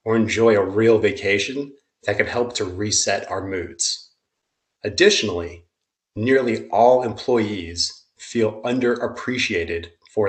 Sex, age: male, 30-49